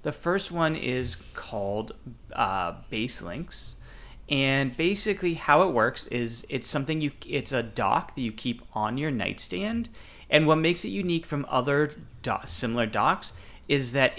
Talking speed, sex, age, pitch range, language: 150 wpm, male, 30-49, 115-150 Hz, English